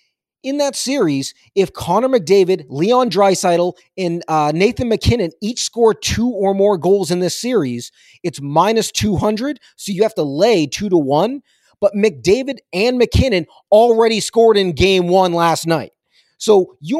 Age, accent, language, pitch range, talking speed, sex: 30-49, American, English, 170-225 Hz, 160 wpm, male